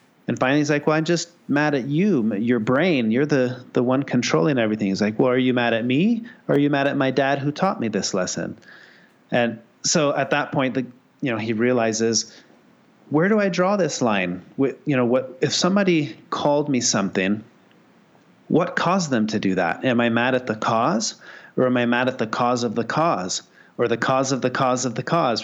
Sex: male